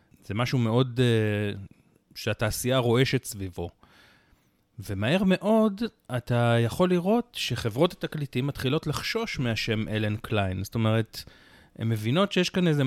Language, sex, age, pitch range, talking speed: Hebrew, male, 30-49, 110-150 Hz, 120 wpm